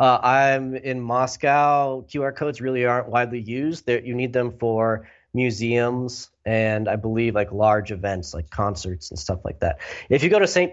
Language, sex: English, male